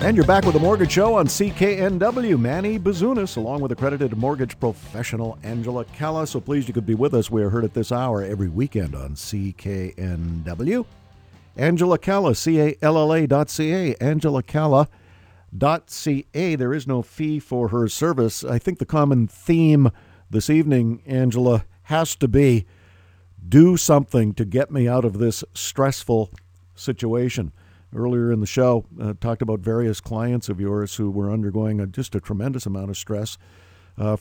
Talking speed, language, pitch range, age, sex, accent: 165 wpm, English, 105-140 Hz, 50-69, male, American